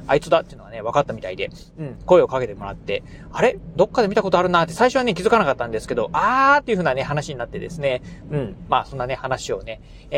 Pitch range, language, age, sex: 135-195 Hz, Japanese, 40-59, male